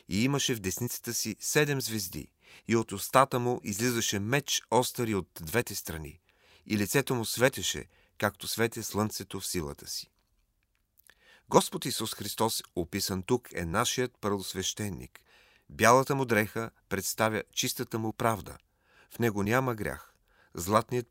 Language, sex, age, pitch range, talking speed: Bulgarian, male, 40-59, 95-125 Hz, 135 wpm